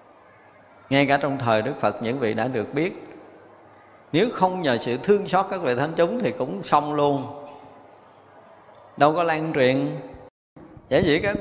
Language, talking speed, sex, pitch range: Vietnamese, 170 wpm, male, 115-155 Hz